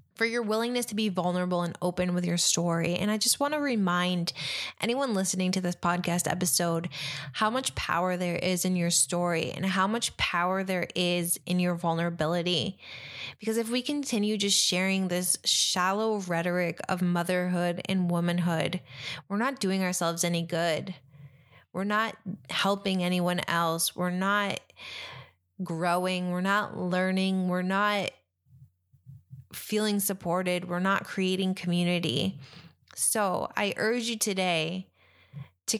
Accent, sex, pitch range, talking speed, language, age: American, female, 175-200 Hz, 140 wpm, English, 20-39